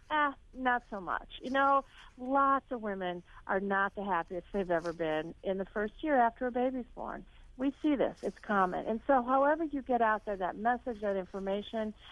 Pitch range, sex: 200-265 Hz, female